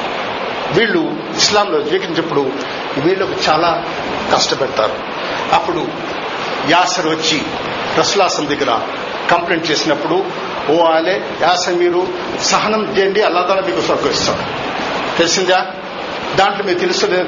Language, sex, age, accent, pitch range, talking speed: Telugu, male, 50-69, native, 180-215 Hz, 95 wpm